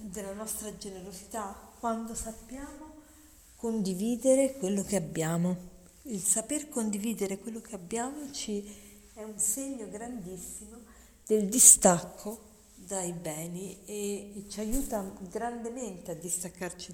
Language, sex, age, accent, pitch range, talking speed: Italian, female, 40-59, native, 185-235 Hz, 105 wpm